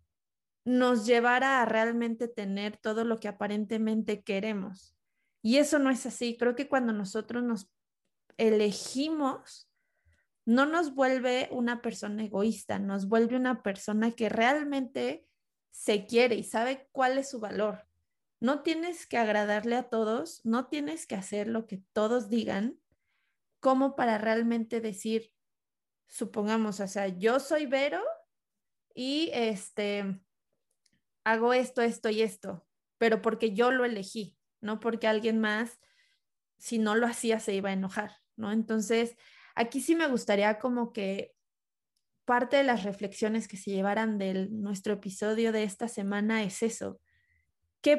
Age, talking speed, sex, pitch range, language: 30-49, 140 wpm, female, 210-250 Hz, Spanish